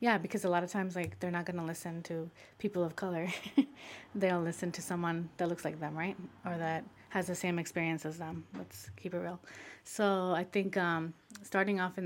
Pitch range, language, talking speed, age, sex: 170-195 Hz, English, 215 wpm, 30-49, female